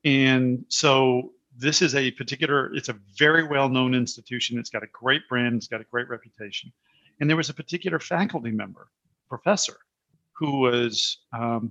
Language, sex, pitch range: English, male, 125-160 Hz